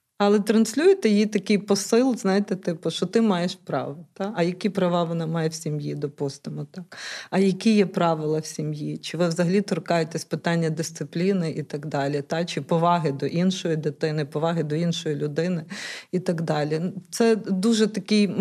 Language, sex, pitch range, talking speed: Ukrainian, female, 170-205 Hz, 170 wpm